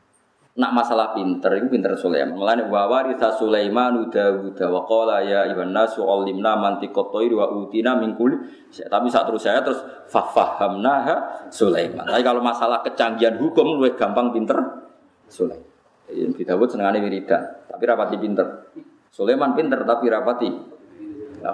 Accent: native